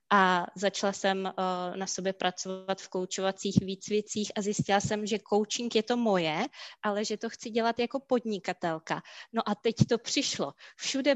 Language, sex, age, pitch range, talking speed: Czech, female, 20-39, 195-230 Hz, 165 wpm